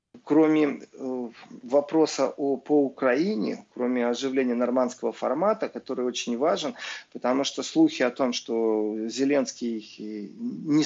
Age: 40-59